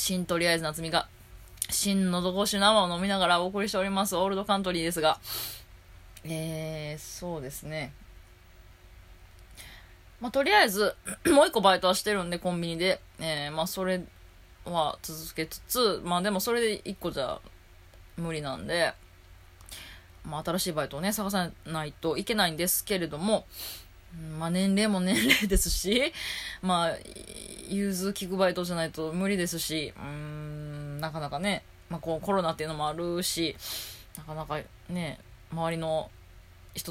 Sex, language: female, Japanese